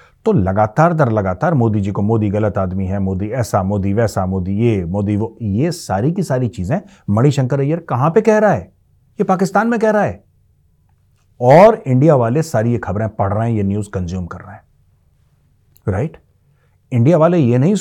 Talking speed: 190 wpm